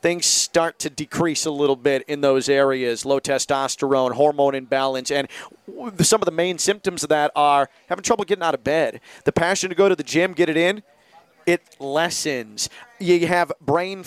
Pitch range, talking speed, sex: 145-180 Hz, 190 wpm, male